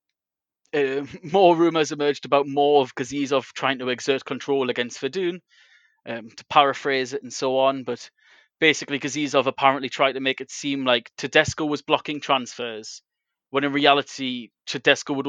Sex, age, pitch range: male, 20-39, 130-155 Hz